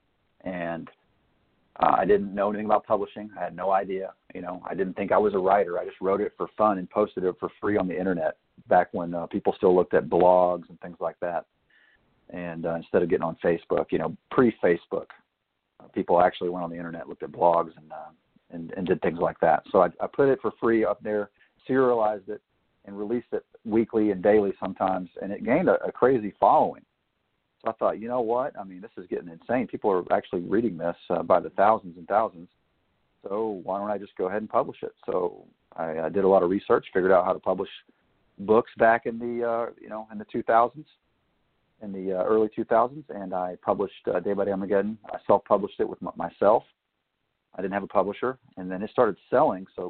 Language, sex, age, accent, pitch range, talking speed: English, male, 40-59, American, 90-110 Hz, 225 wpm